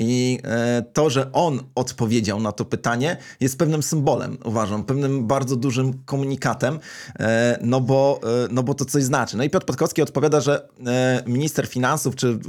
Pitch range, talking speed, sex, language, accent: 120-145 Hz, 150 wpm, male, Polish, native